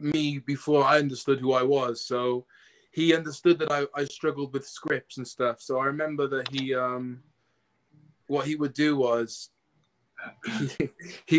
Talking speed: 160 wpm